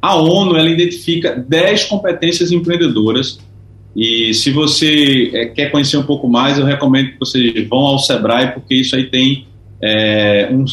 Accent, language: Brazilian, Portuguese